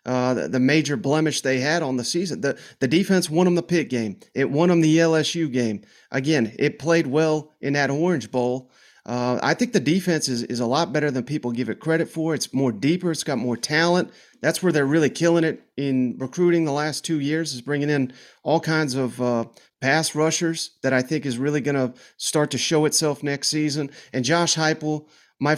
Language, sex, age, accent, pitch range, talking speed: English, male, 30-49, American, 130-165 Hz, 220 wpm